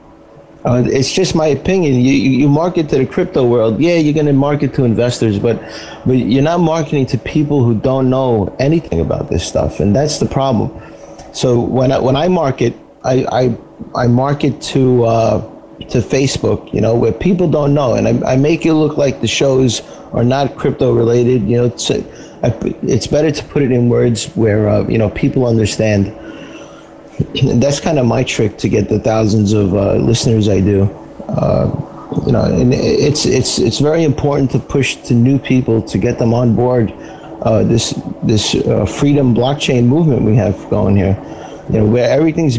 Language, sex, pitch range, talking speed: English, male, 115-145 Hz, 190 wpm